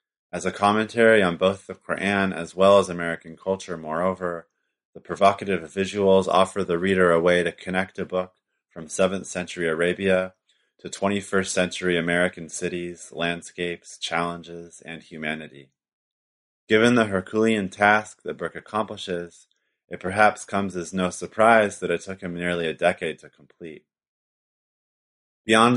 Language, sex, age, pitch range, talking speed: English, male, 30-49, 85-100 Hz, 140 wpm